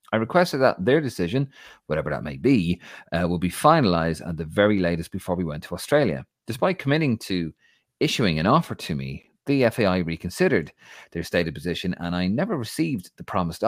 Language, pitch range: English, 80-105 Hz